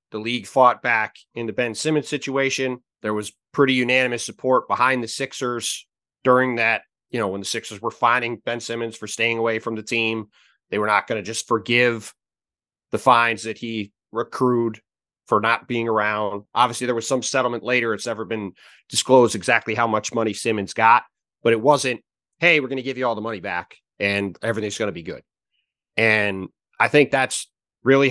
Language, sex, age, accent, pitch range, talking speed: English, male, 30-49, American, 115-140 Hz, 190 wpm